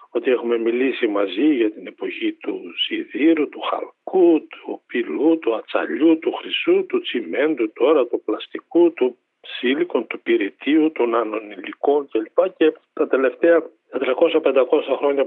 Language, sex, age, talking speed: Greek, male, 50-69, 140 wpm